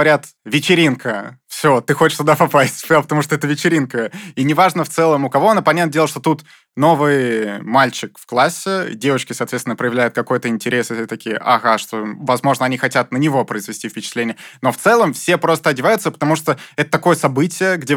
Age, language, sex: 20-39, Russian, male